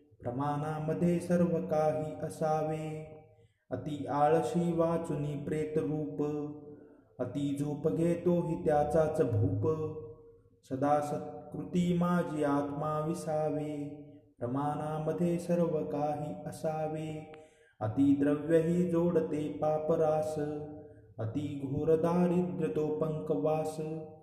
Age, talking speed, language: 30-49, 75 wpm, Marathi